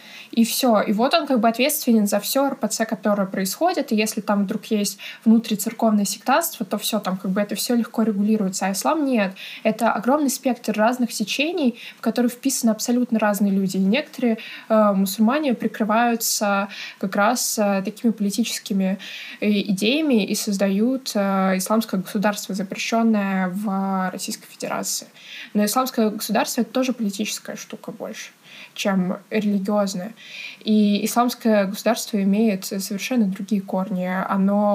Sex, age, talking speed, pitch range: female, 20-39, 140 wpm, 200-230 Hz